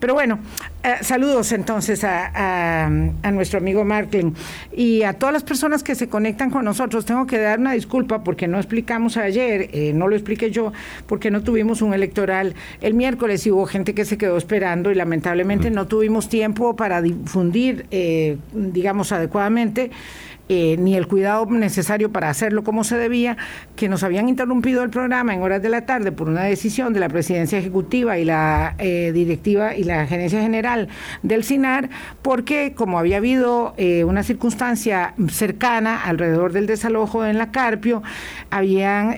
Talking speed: 170 wpm